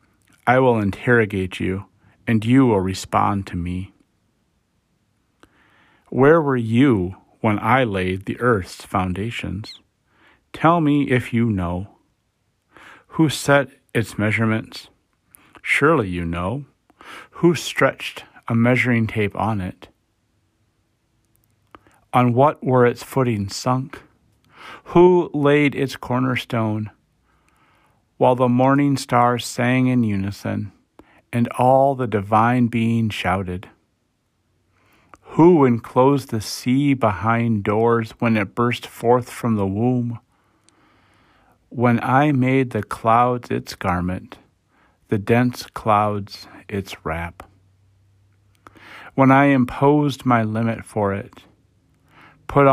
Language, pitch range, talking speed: English, 100-125 Hz, 105 wpm